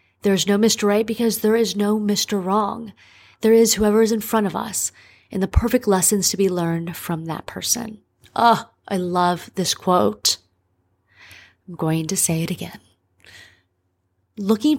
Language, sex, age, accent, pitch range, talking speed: English, female, 30-49, American, 175-215 Hz, 165 wpm